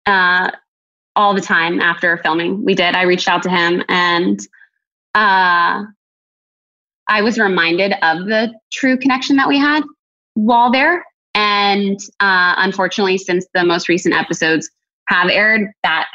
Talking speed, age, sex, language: 140 wpm, 20-39, female, English